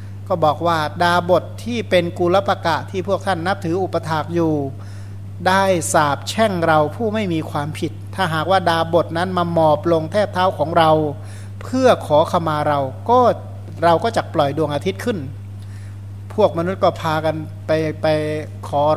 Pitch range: 100-170 Hz